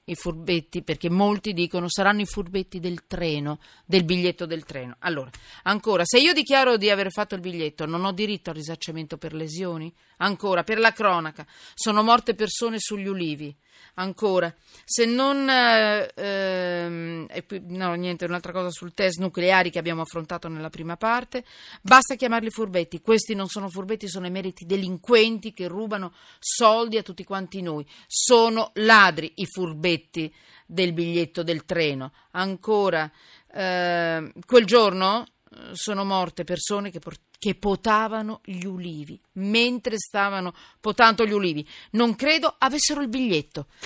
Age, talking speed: 40-59, 145 wpm